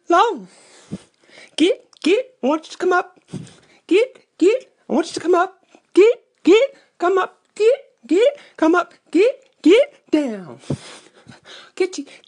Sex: male